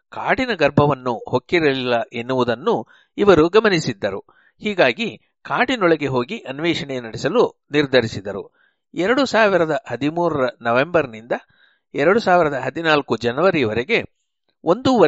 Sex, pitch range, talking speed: male, 125-170 Hz, 95 wpm